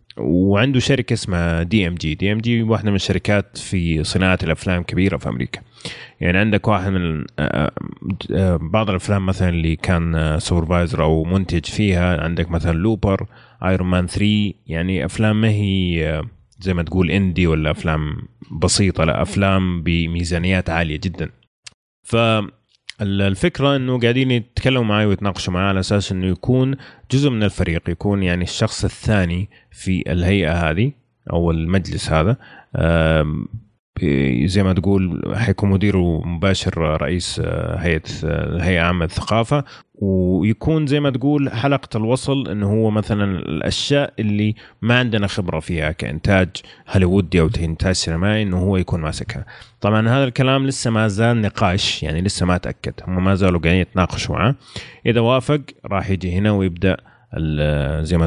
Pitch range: 85-110 Hz